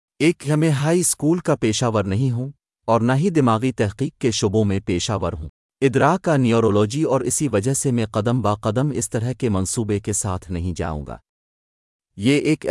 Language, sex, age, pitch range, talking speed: Urdu, male, 40-59, 95-130 Hz, 195 wpm